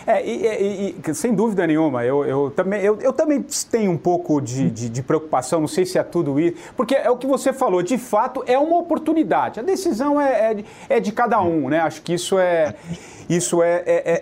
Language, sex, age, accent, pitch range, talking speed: English, male, 40-59, Brazilian, 175-275 Hz, 225 wpm